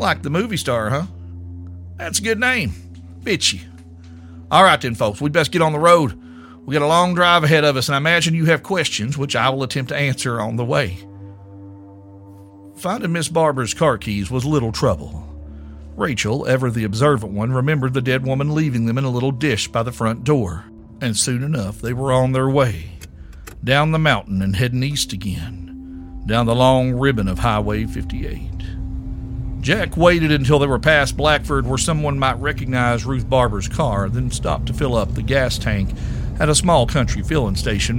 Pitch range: 100-140 Hz